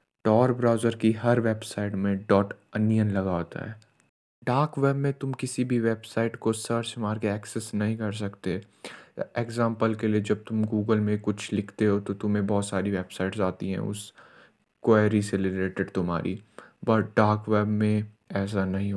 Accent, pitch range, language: native, 100-115 Hz, Hindi